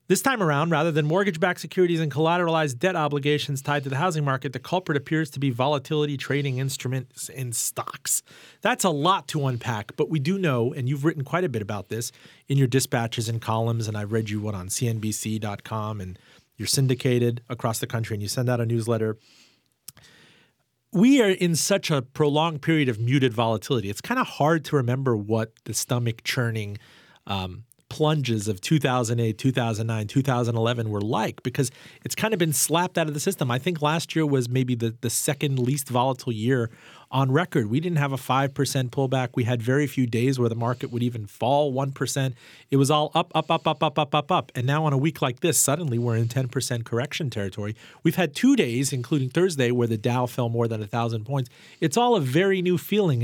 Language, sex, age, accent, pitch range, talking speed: English, male, 40-59, American, 120-155 Hz, 205 wpm